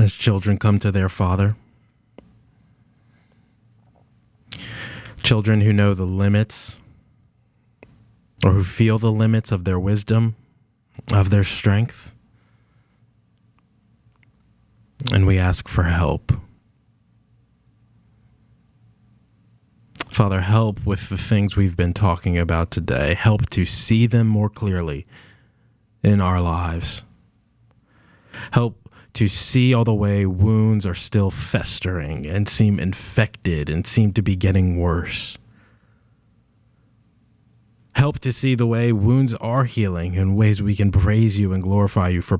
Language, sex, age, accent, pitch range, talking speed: English, male, 20-39, American, 95-115 Hz, 115 wpm